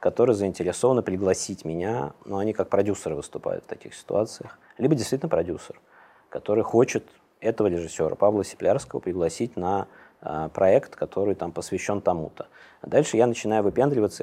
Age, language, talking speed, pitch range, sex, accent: 20-39, Russian, 145 wpm, 90-110 Hz, male, native